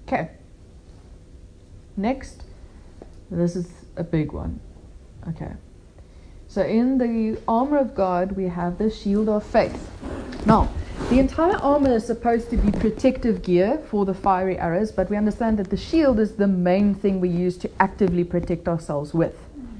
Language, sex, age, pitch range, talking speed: English, female, 30-49, 180-220 Hz, 155 wpm